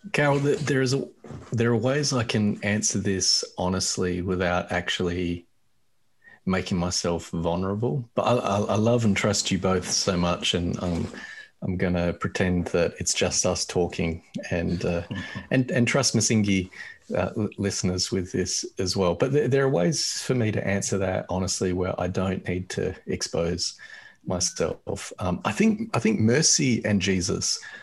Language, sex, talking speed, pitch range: English, male, 170 wpm, 90-105 Hz